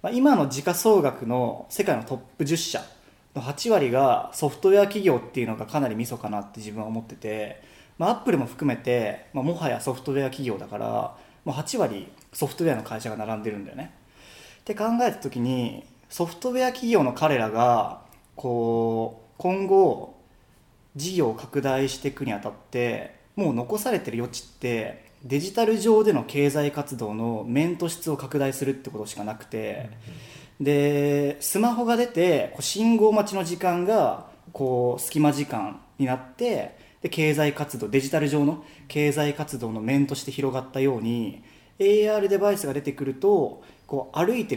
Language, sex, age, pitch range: Japanese, male, 20-39, 120-165 Hz